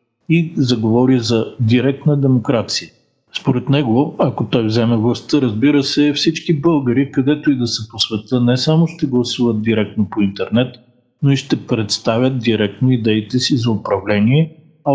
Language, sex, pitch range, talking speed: Bulgarian, male, 110-135 Hz, 155 wpm